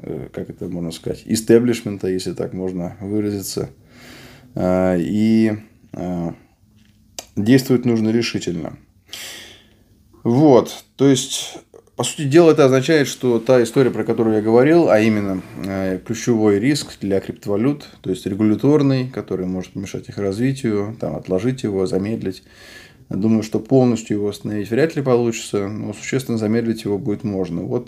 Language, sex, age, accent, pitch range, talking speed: Russian, male, 20-39, native, 100-125 Hz, 130 wpm